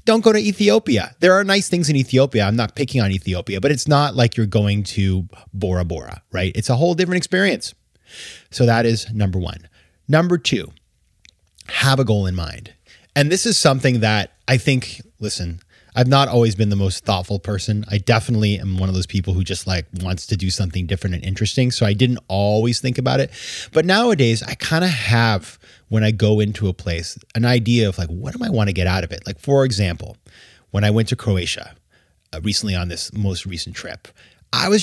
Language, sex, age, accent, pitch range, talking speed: English, male, 30-49, American, 95-130 Hz, 215 wpm